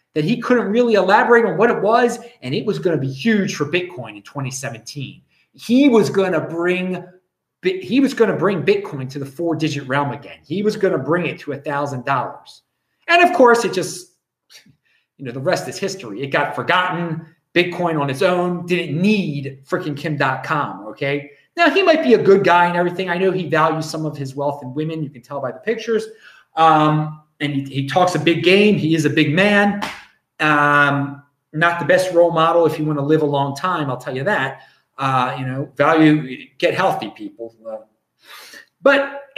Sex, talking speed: male, 205 wpm